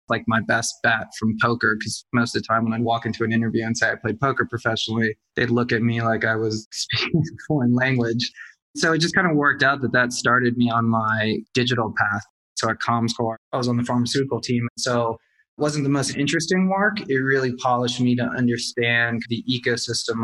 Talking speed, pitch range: 220 wpm, 115-125 Hz